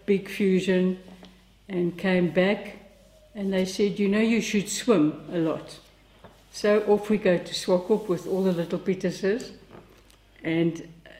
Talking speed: 145 wpm